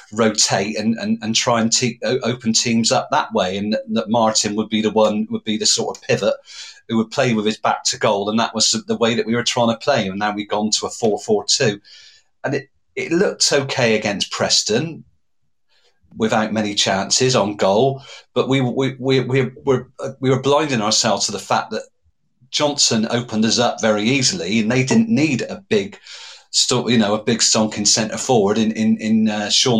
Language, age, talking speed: English, 40-59, 205 wpm